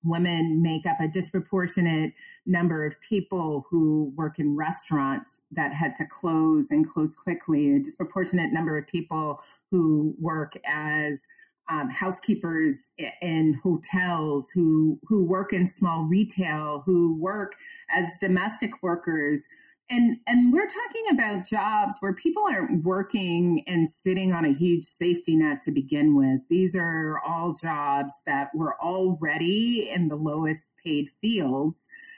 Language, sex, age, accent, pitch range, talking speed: English, female, 30-49, American, 155-205 Hz, 140 wpm